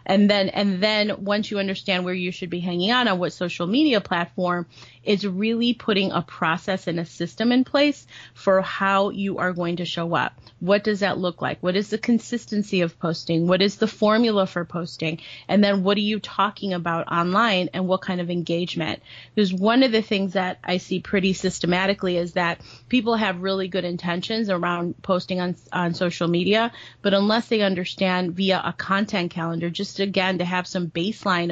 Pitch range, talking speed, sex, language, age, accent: 175-200 Hz, 195 wpm, female, English, 30-49, American